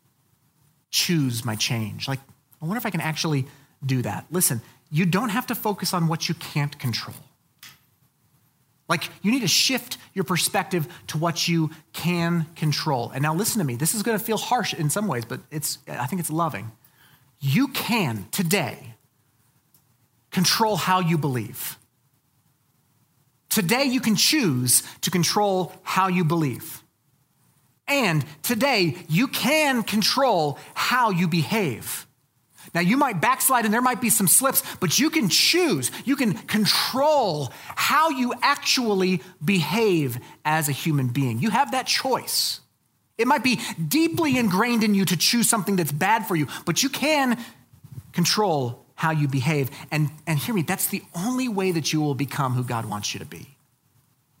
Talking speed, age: 160 wpm, 30-49